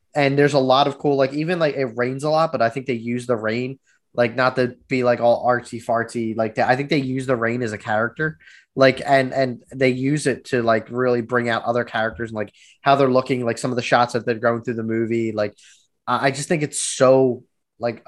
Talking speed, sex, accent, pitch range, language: 250 wpm, male, American, 115-135 Hz, English